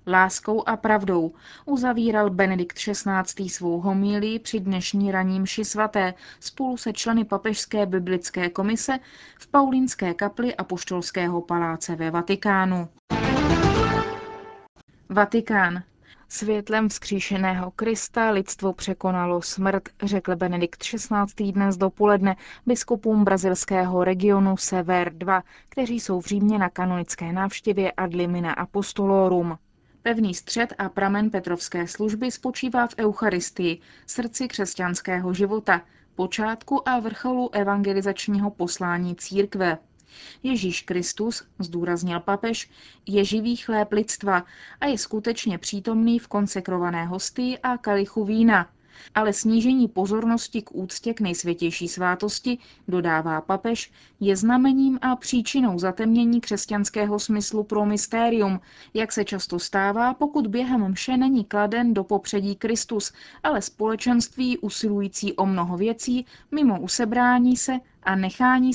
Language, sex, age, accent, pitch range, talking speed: Czech, female, 20-39, native, 185-230 Hz, 115 wpm